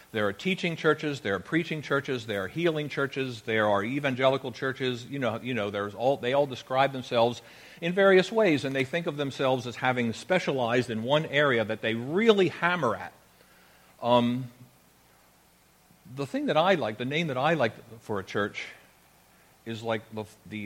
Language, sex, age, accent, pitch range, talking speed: English, male, 50-69, American, 110-145 Hz, 185 wpm